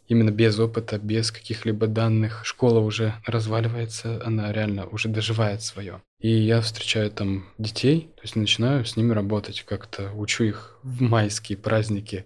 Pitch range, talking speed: 110-125 Hz, 150 wpm